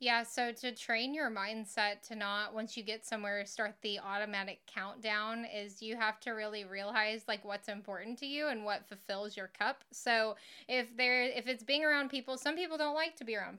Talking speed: 210 wpm